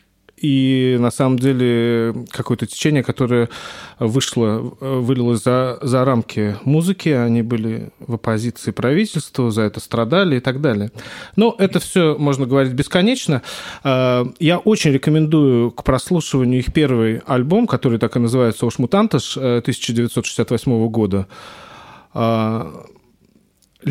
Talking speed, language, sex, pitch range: 115 wpm, Russian, male, 115-150 Hz